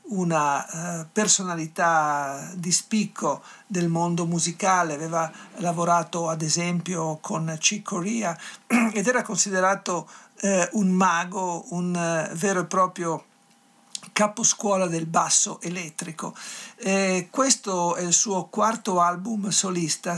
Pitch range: 170-200 Hz